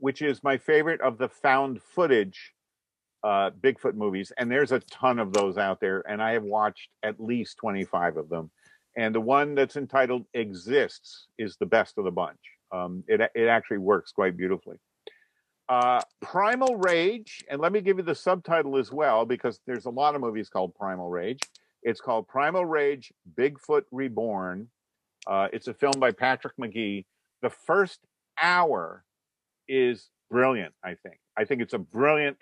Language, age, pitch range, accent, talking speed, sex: English, 50-69, 110-165 Hz, American, 170 wpm, male